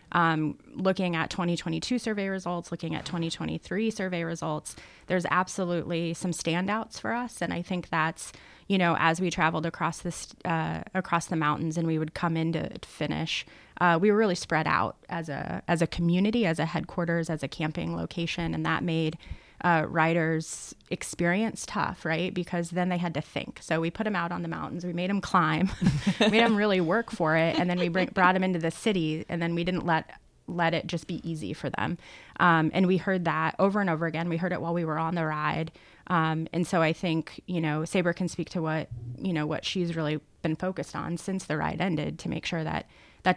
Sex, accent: female, American